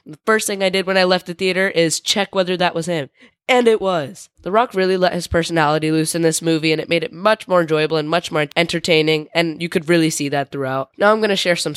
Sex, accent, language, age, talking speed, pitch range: female, American, English, 10-29, 270 wpm, 155-185 Hz